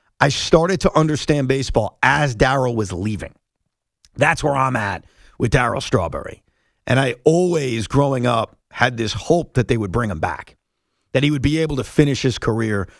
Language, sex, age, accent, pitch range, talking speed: English, male, 40-59, American, 115-150 Hz, 180 wpm